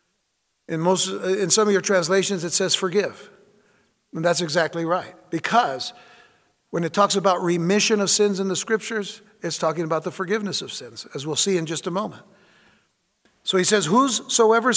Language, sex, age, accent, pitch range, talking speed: English, male, 60-79, American, 170-215 Hz, 175 wpm